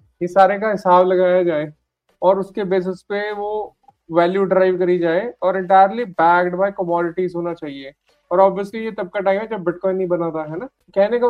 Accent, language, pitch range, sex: Indian, English, 180-205 Hz, male